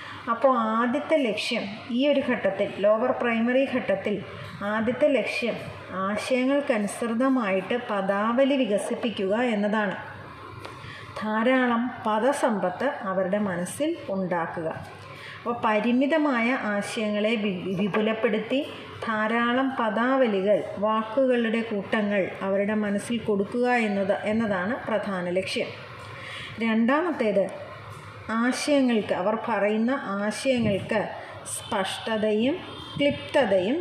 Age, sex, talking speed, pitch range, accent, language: 30-49, female, 75 wpm, 205-255 Hz, native, Malayalam